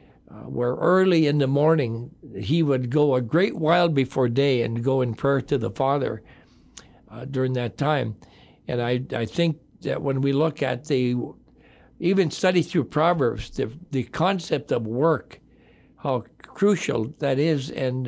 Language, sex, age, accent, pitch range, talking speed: English, male, 60-79, American, 130-165 Hz, 165 wpm